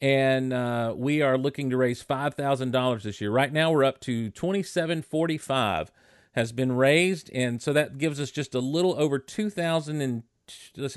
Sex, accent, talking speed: male, American, 160 wpm